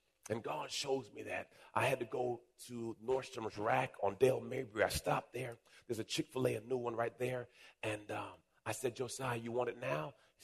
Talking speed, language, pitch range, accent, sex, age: 205 wpm, English, 110-130 Hz, American, male, 40-59